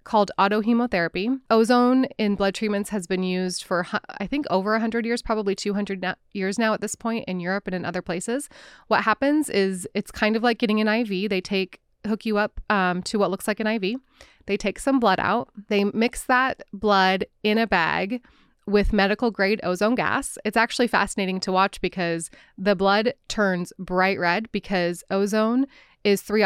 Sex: female